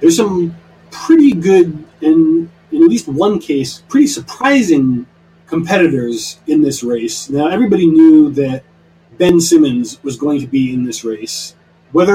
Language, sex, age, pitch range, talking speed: English, male, 30-49, 125-170 Hz, 150 wpm